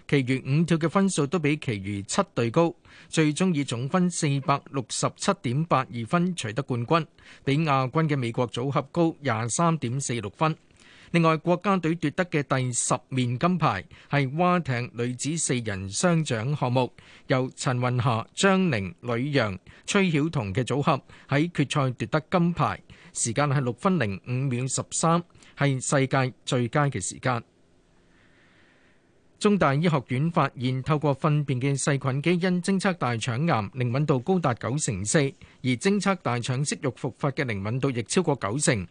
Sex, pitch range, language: male, 125-160 Hz, Chinese